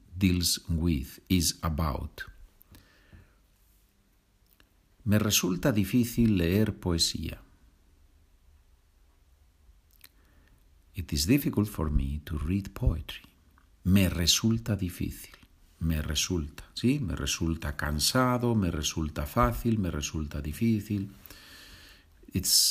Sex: male